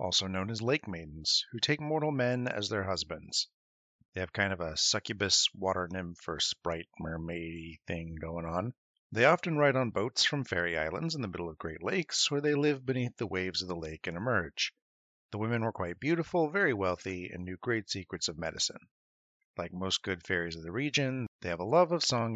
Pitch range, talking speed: 85-125 Hz, 205 wpm